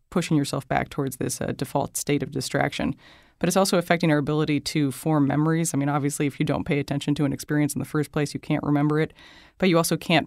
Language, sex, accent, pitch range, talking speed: English, female, American, 140-155 Hz, 245 wpm